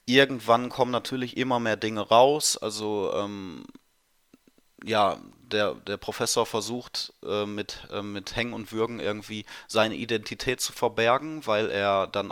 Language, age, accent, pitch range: German, 30-49, German, 105-135 Hz